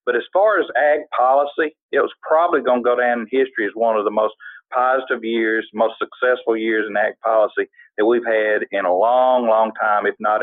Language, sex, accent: English, male, American